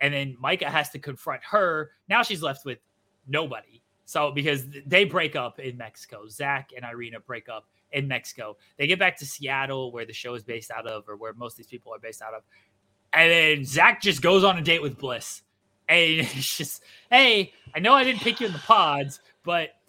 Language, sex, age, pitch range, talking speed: English, male, 20-39, 135-195 Hz, 215 wpm